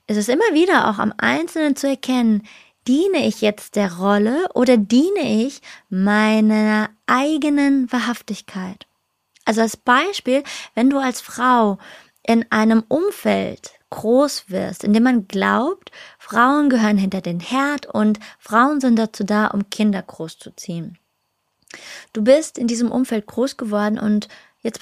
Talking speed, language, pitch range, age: 140 wpm, German, 210-270 Hz, 20-39